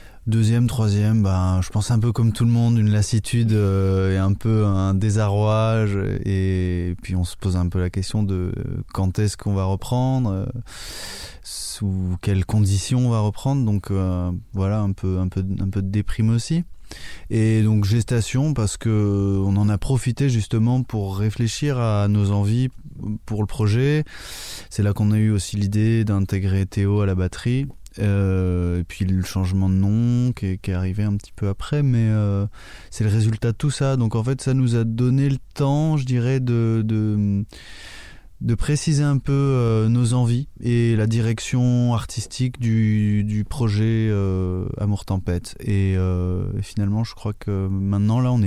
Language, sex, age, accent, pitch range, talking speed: French, male, 20-39, French, 95-115 Hz, 180 wpm